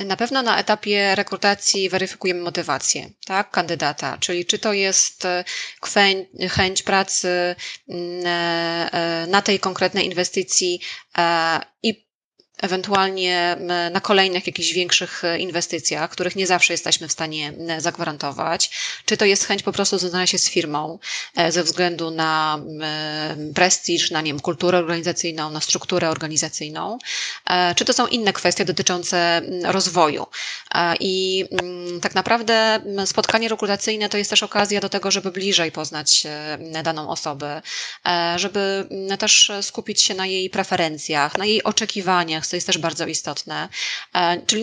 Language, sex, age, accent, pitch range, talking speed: Polish, female, 20-39, native, 170-195 Hz, 125 wpm